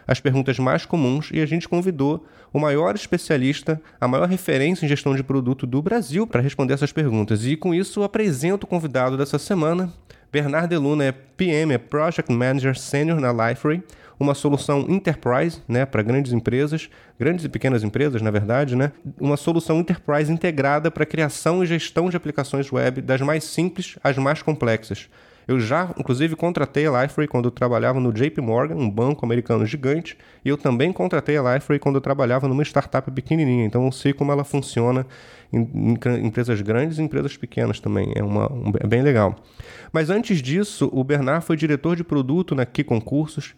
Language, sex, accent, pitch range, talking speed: Portuguese, male, Brazilian, 130-160 Hz, 180 wpm